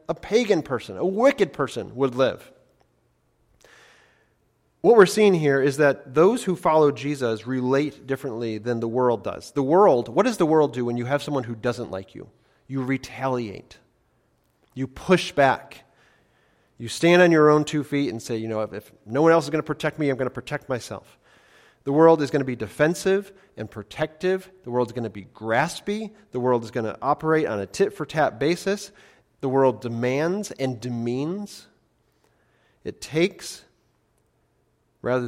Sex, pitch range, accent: male, 115-160 Hz, American